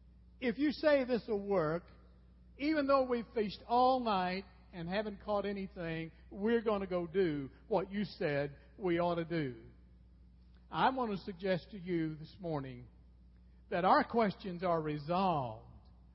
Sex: male